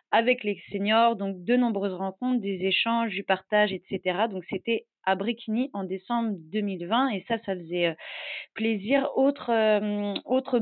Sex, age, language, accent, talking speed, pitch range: female, 30-49, French, French, 155 wpm, 195-245 Hz